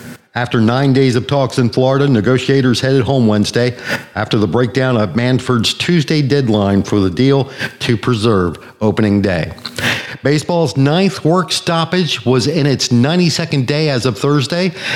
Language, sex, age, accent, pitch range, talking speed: English, male, 50-69, American, 110-140 Hz, 150 wpm